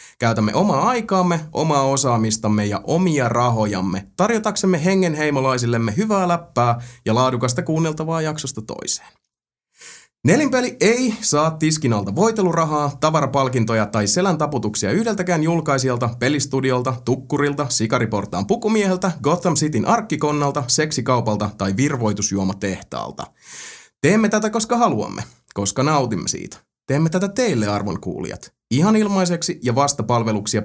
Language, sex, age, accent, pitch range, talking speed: Finnish, male, 30-49, native, 110-165 Hz, 105 wpm